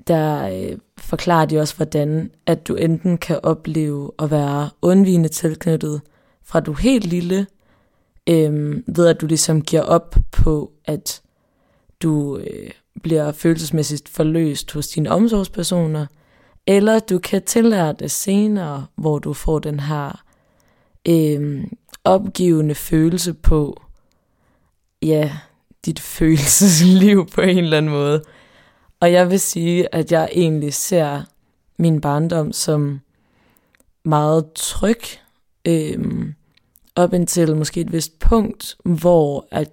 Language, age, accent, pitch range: Danish, 20-39, native, 150-180 Hz